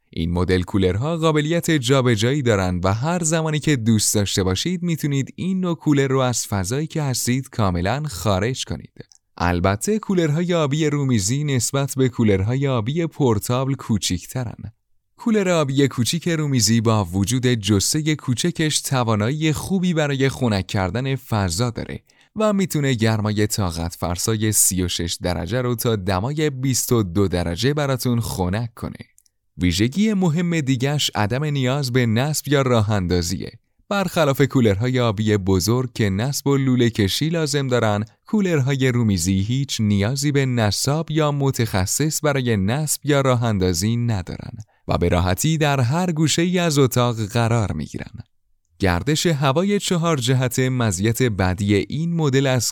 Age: 30-49